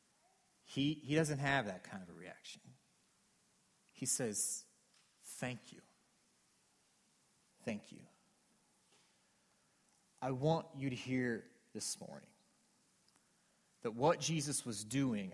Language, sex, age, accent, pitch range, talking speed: English, male, 30-49, American, 120-160 Hz, 105 wpm